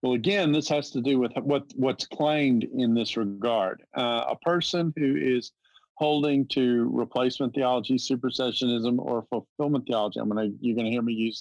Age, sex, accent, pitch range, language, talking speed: 50-69, male, American, 115-145 Hz, English, 180 wpm